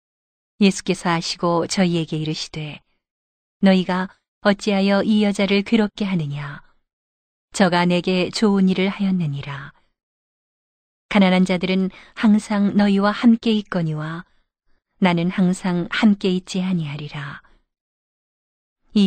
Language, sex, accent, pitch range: Korean, female, native, 165-200 Hz